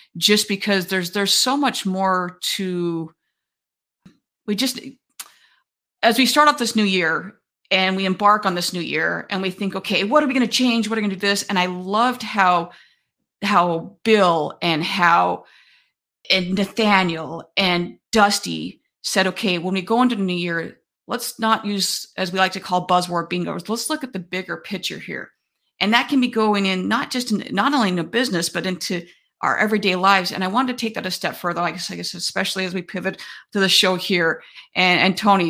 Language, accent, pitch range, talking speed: English, American, 175-220 Hz, 205 wpm